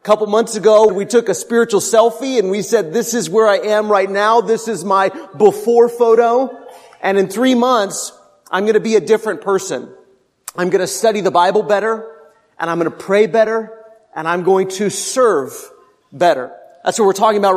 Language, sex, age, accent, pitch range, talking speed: English, male, 30-49, American, 195-245 Hz, 200 wpm